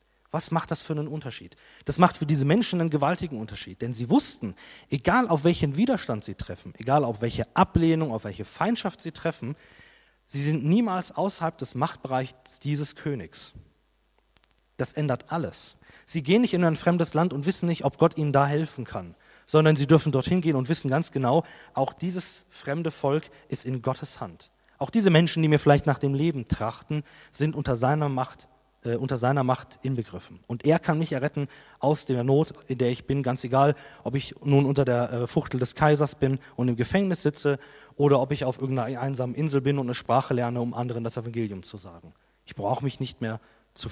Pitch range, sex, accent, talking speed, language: 125-160 Hz, male, German, 200 wpm, German